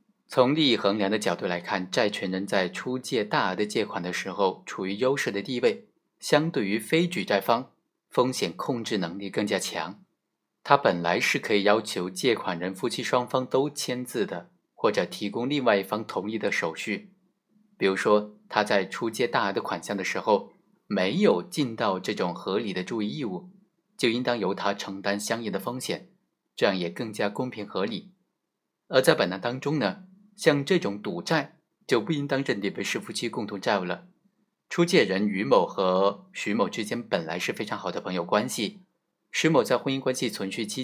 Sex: male